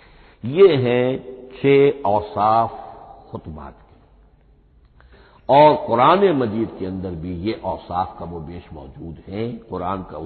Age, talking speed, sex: 60-79, 125 wpm, male